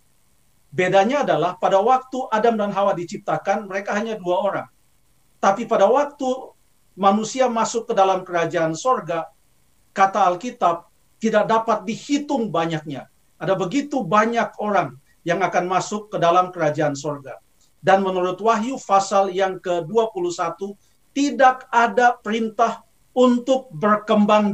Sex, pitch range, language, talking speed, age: male, 170-220 Hz, Indonesian, 120 wpm, 50-69